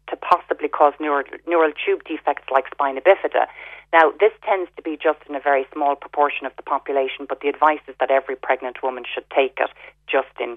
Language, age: English, 30-49